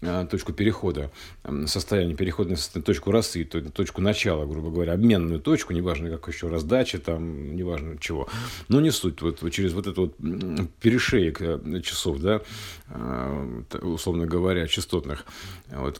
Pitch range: 85-105 Hz